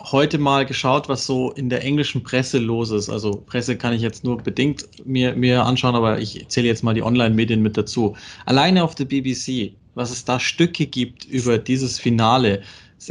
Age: 20-39